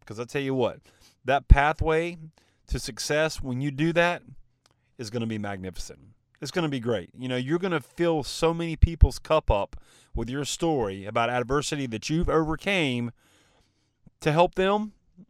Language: English